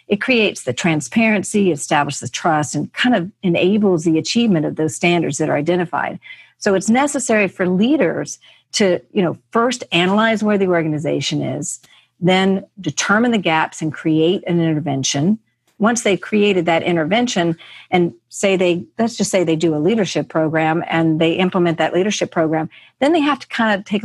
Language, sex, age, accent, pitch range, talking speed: English, female, 50-69, American, 160-200 Hz, 175 wpm